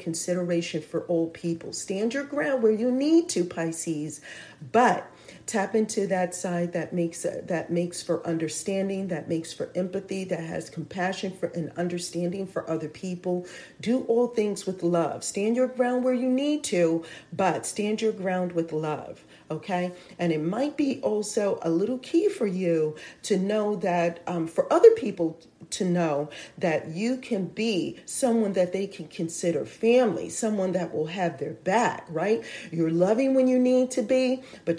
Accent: American